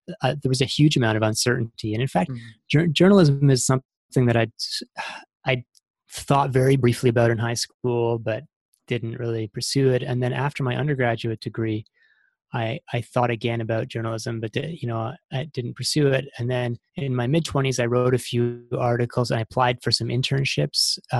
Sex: male